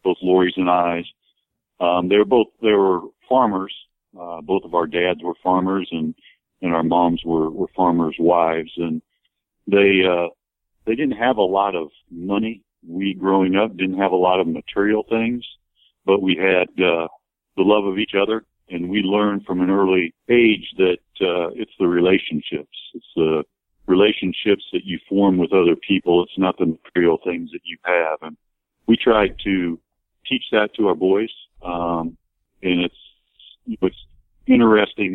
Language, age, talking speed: English, 50-69, 160 wpm